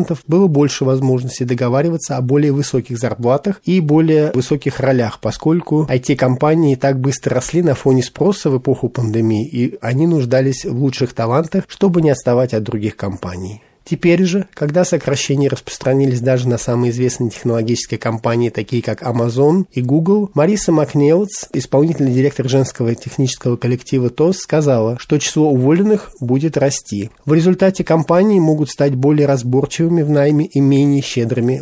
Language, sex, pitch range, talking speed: Russian, male, 120-150 Hz, 145 wpm